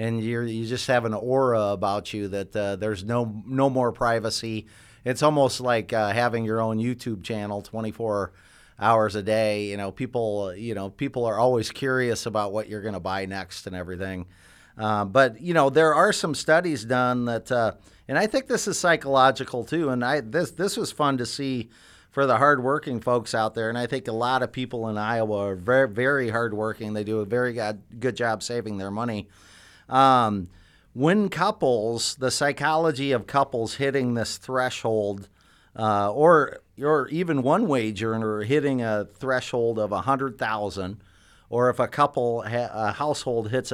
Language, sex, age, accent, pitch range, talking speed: English, male, 40-59, American, 105-130 Hz, 180 wpm